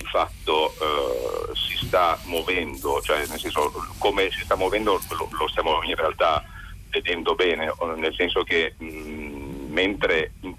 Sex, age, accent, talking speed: male, 40-59, native, 140 wpm